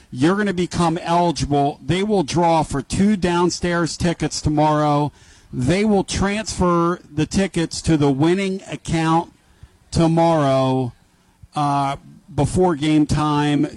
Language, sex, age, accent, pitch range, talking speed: English, male, 50-69, American, 145-170 Hz, 120 wpm